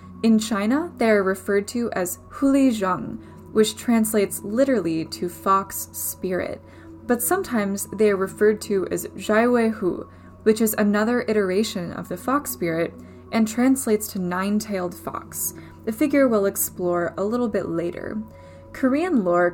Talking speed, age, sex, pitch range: 145 wpm, 10-29, female, 185-240 Hz